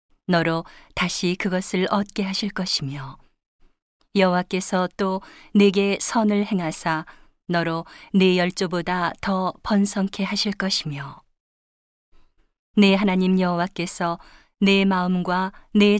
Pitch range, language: 170-200 Hz, Korean